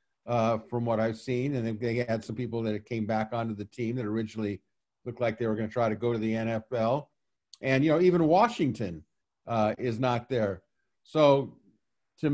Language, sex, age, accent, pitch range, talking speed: English, male, 50-69, American, 120-165 Hz, 200 wpm